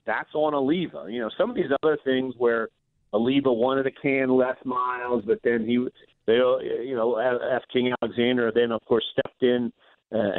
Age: 40-59